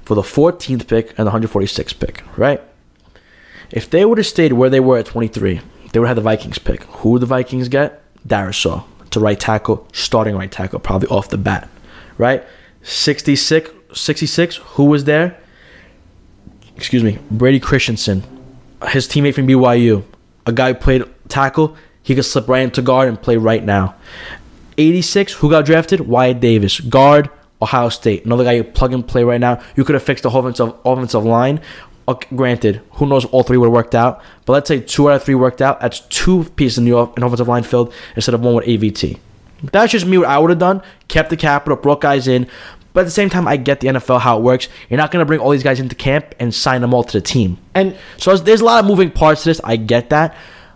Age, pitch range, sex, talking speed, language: 20-39, 115-150 Hz, male, 220 wpm, English